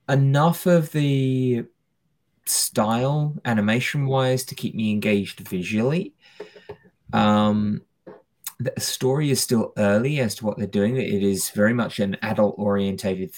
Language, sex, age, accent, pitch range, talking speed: English, male, 20-39, British, 100-135 Hz, 130 wpm